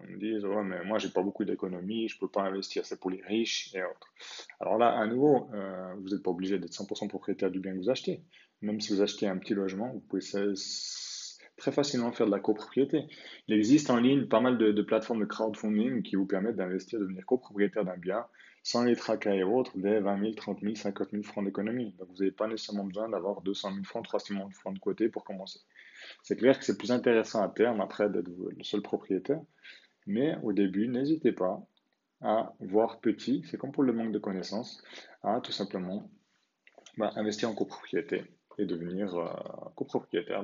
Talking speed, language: 210 wpm, French